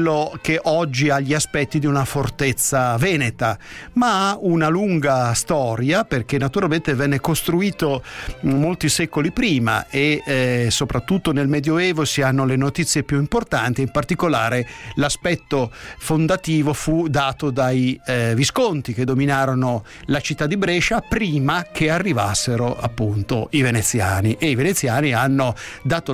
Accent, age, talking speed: native, 50-69, 135 wpm